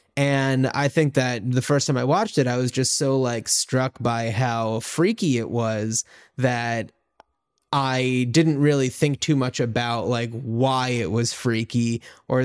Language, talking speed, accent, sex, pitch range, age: English, 170 wpm, American, male, 125-150 Hz, 20-39